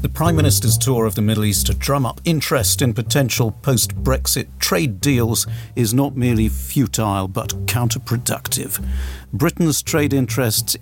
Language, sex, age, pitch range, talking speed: English, male, 50-69, 100-130 Hz, 145 wpm